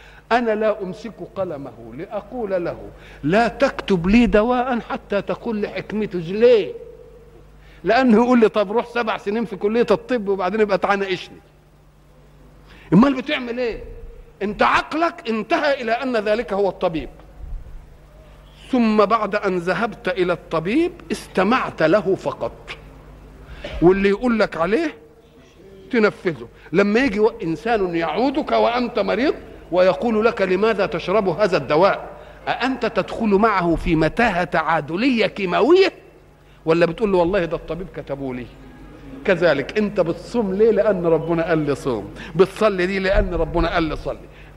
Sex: male